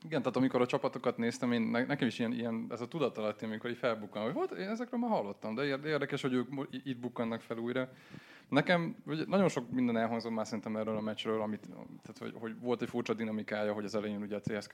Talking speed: 235 wpm